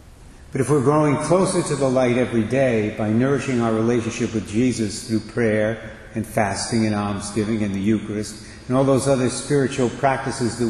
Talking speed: 180 wpm